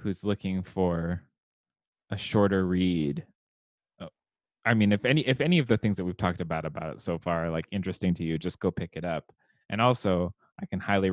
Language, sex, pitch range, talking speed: English, male, 95-115 Hz, 200 wpm